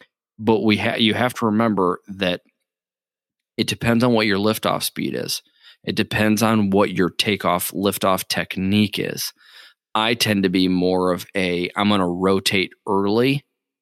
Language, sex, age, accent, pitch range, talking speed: English, male, 20-39, American, 90-105 Hz, 160 wpm